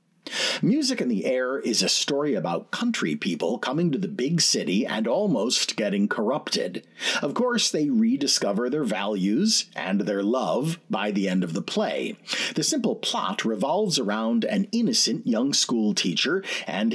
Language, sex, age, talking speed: English, male, 40-59, 160 wpm